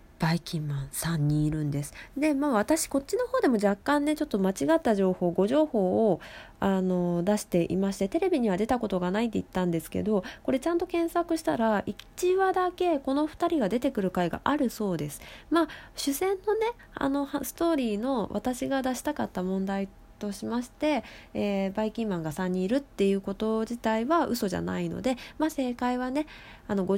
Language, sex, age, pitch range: Japanese, female, 20-39, 175-270 Hz